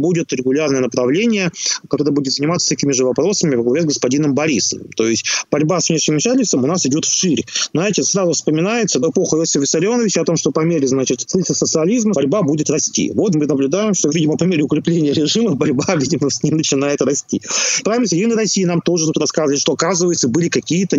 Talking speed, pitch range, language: 185 wpm, 145-180 Hz, Russian